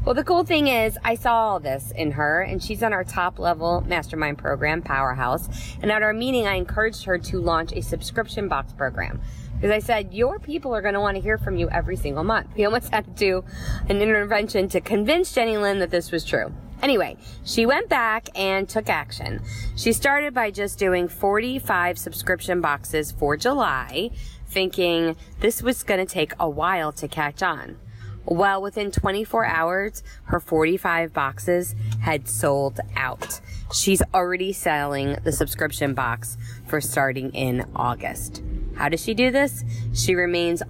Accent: American